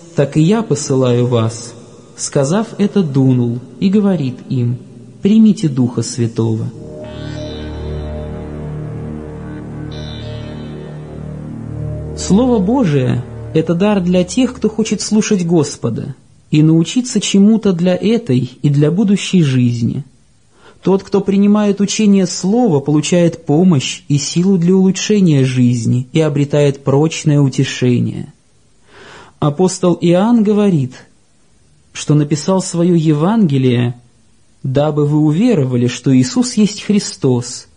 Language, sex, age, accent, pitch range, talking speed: Russian, male, 30-49, native, 130-185 Hz, 100 wpm